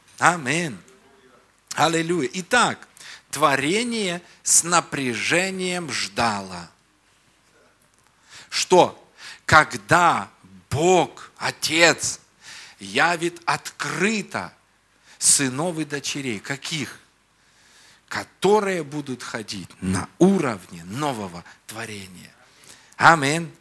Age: 50-69